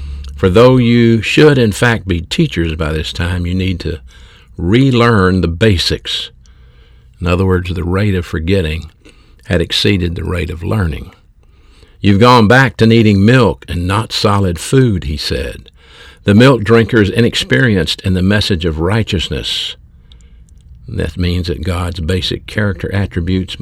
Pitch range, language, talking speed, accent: 80-100 Hz, English, 150 wpm, American